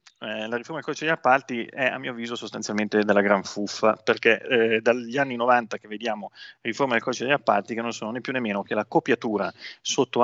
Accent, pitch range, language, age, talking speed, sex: native, 105-120 Hz, Italian, 30-49, 225 wpm, male